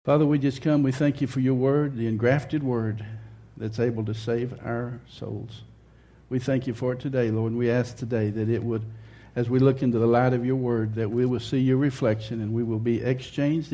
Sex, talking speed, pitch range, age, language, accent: male, 230 wpm, 115-140 Hz, 60-79, English, American